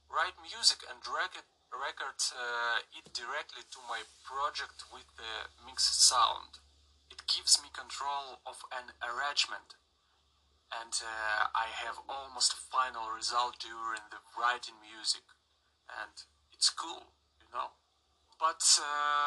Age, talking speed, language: 30-49, 120 wpm, English